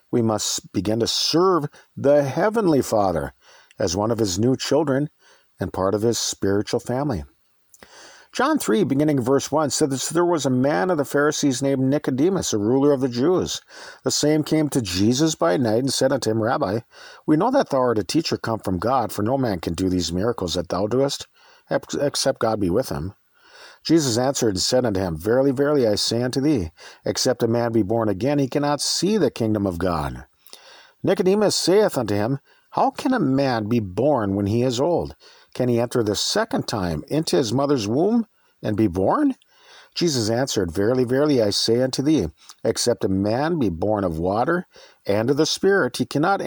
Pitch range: 110-150 Hz